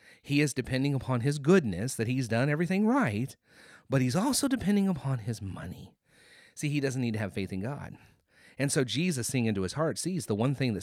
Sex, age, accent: male, 30-49, American